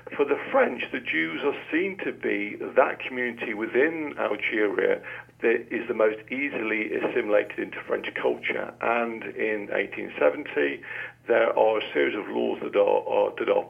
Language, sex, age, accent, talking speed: English, male, 50-69, British, 150 wpm